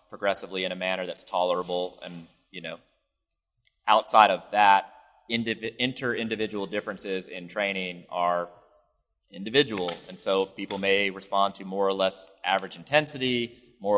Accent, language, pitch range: American, English, 90-110 Hz